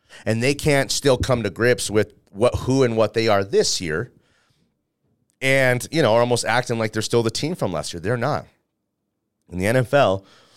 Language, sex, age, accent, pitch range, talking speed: English, male, 30-49, American, 85-110 Hz, 200 wpm